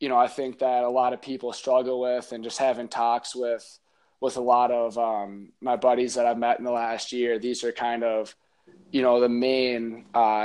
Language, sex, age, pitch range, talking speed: English, male, 20-39, 115-125 Hz, 225 wpm